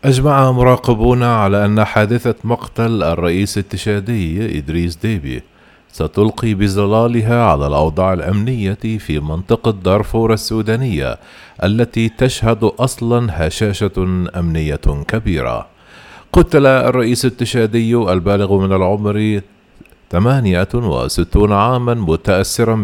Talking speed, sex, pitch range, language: 90 wpm, male, 90-115 Hz, Arabic